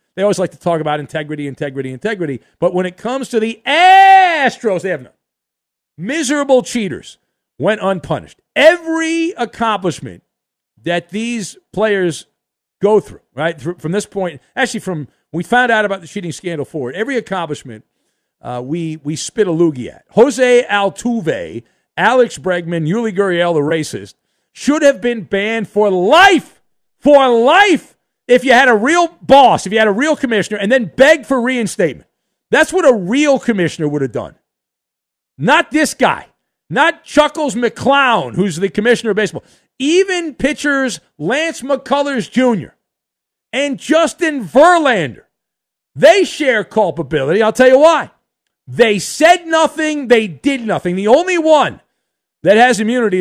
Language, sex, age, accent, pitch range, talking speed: English, male, 50-69, American, 180-280 Hz, 150 wpm